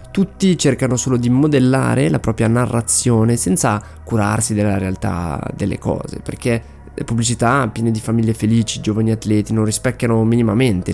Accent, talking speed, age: native, 145 wpm, 20-39